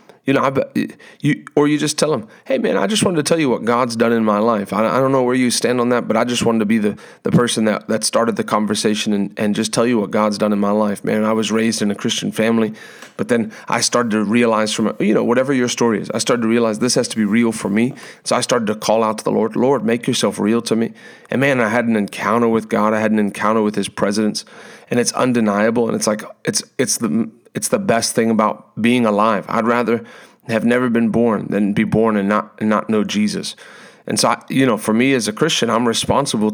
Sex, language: male, English